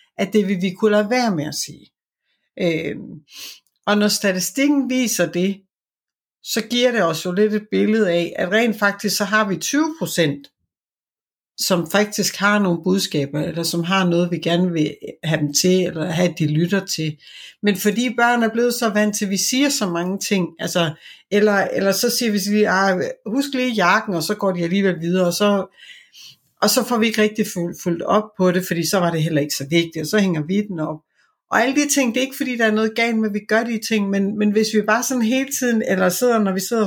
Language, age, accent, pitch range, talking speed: Danish, 60-79, native, 175-225 Hz, 230 wpm